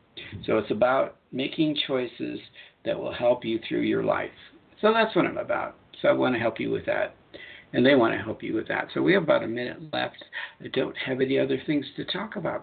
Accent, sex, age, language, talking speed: American, male, 60-79, English, 235 wpm